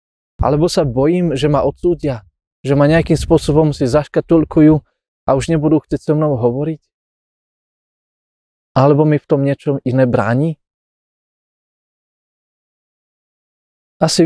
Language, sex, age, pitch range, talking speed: Slovak, male, 20-39, 130-165 Hz, 115 wpm